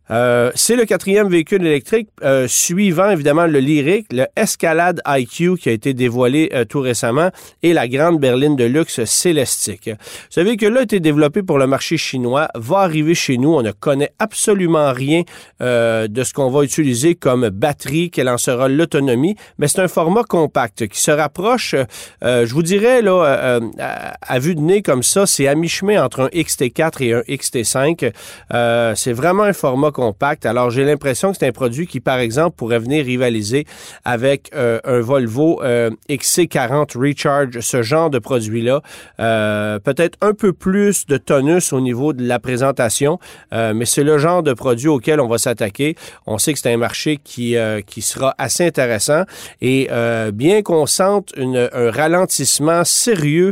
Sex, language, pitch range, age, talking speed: male, French, 120-170 Hz, 40-59, 185 wpm